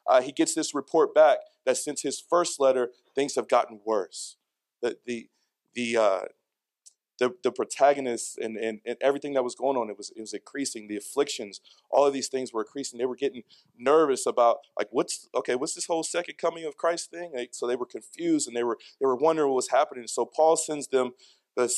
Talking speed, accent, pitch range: 215 wpm, American, 125-160 Hz